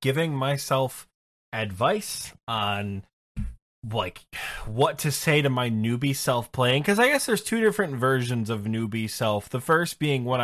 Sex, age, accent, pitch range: male, 10-29, American, 110-140 Hz